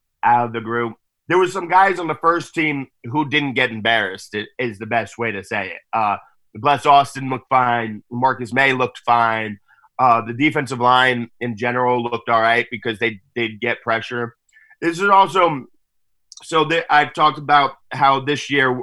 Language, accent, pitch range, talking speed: English, American, 120-140 Hz, 180 wpm